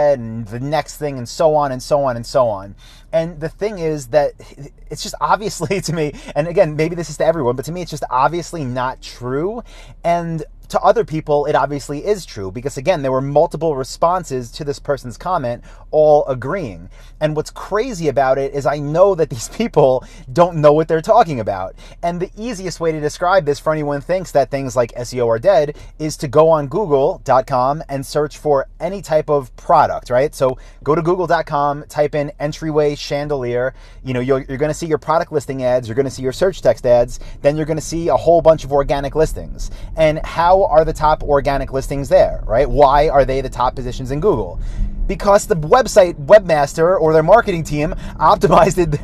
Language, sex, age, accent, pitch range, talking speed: English, male, 30-49, American, 130-165 Hz, 205 wpm